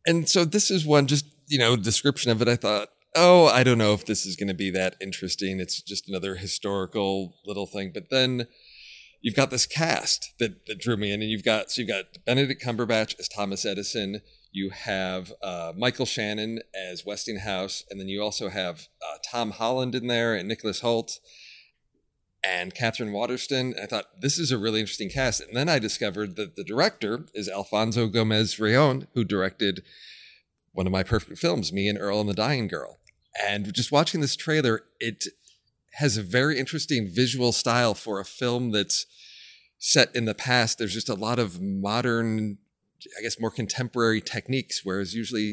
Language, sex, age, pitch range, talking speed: English, male, 40-59, 100-125 Hz, 185 wpm